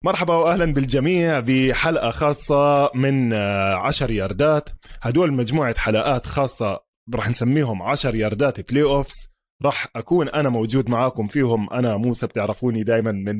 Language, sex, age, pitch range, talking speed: Arabic, male, 20-39, 115-150 Hz, 130 wpm